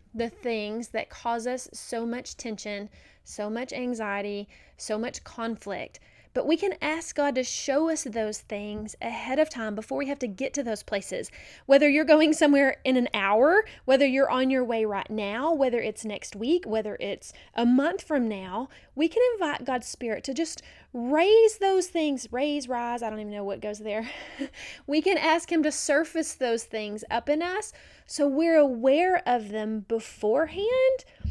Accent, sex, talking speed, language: American, female, 180 wpm, English